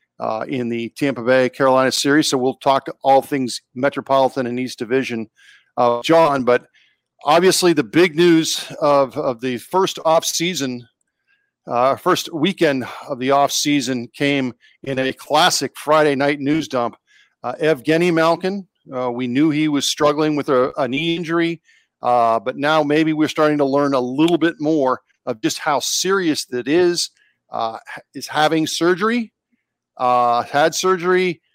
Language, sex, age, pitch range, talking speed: English, male, 50-69, 135-170 Hz, 160 wpm